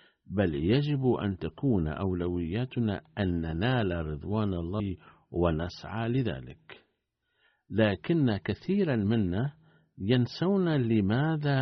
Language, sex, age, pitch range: Arabic, male, 50-69, 90-125 Hz